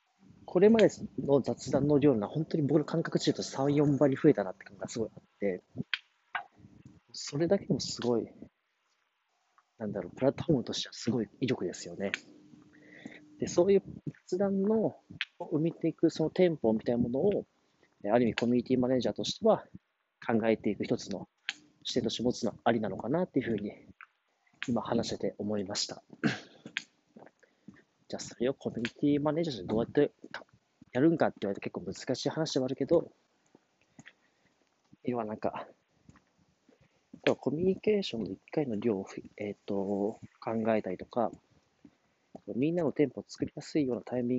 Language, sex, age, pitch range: Japanese, male, 40-59, 110-160 Hz